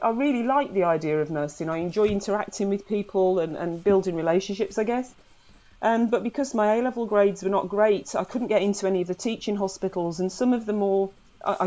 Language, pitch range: English, 175-225 Hz